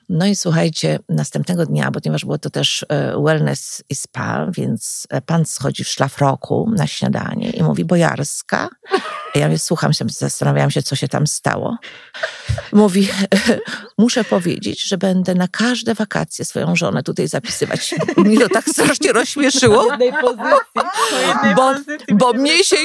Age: 40-59